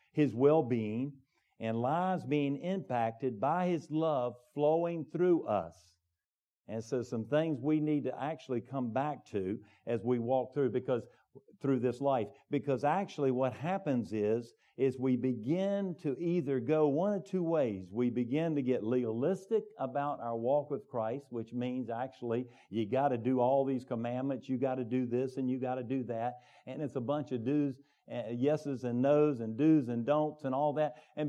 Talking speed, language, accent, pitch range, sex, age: 180 wpm, English, American, 125-160 Hz, male, 50-69